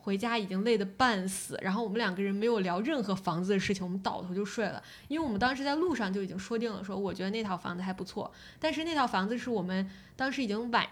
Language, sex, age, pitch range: Chinese, female, 10-29, 195-230 Hz